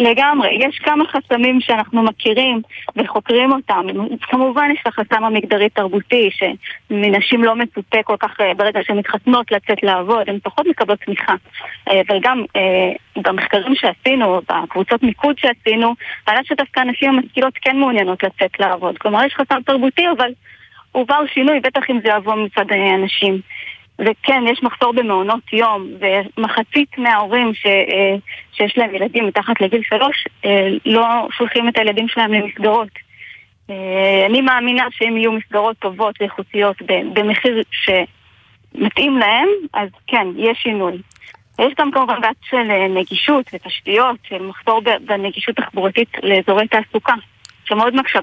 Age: 20-39